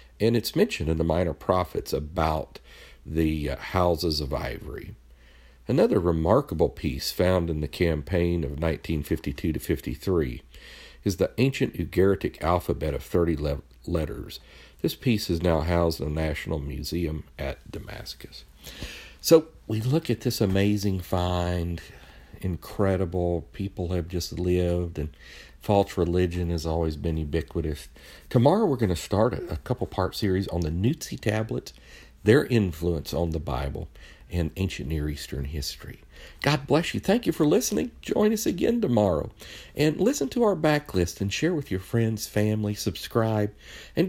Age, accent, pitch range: 50-69, American, 75-105 Hz